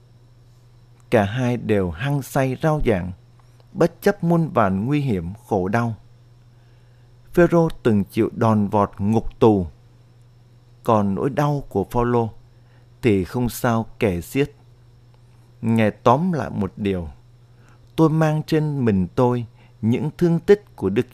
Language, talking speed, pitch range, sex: Vietnamese, 135 wpm, 110-125 Hz, male